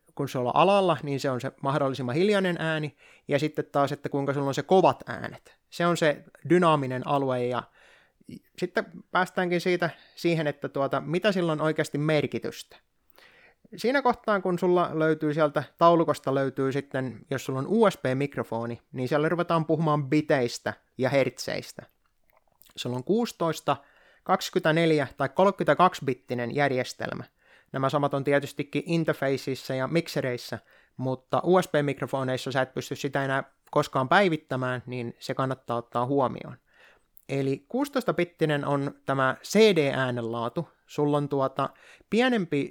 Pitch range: 130-165 Hz